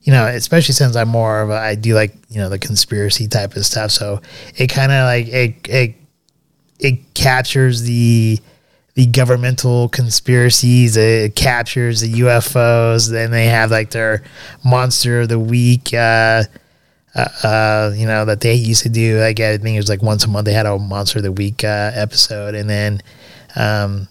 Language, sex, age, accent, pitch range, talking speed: English, male, 20-39, American, 110-130 Hz, 190 wpm